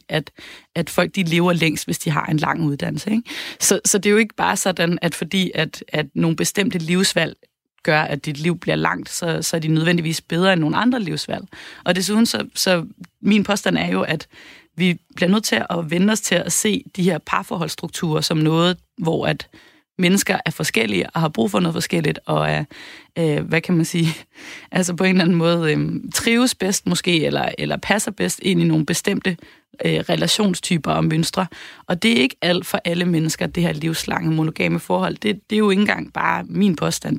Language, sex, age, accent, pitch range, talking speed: Danish, female, 30-49, native, 160-190 Hz, 205 wpm